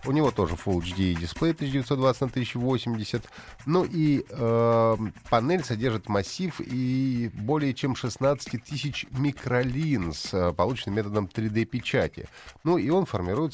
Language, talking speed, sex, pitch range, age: Russian, 110 wpm, male, 95-130 Hz, 30-49